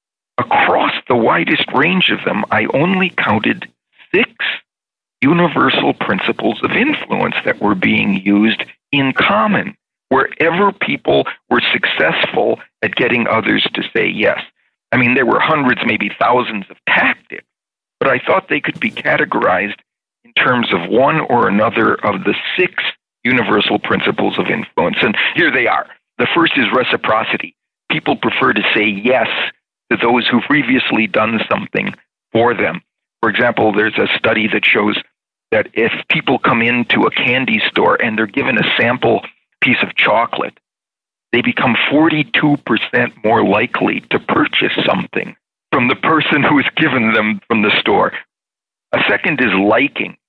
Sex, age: male, 50-69